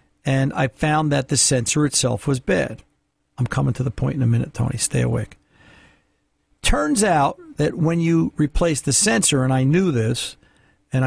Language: English